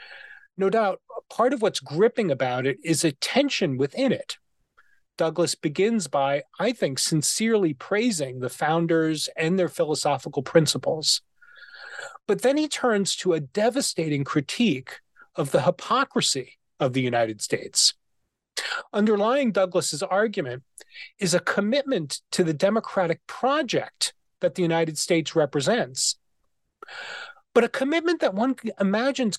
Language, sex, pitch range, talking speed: English, male, 150-225 Hz, 125 wpm